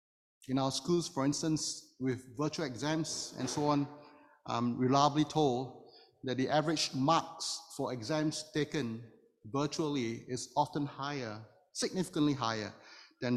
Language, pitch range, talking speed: English, 115-150 Hz, 125 wpm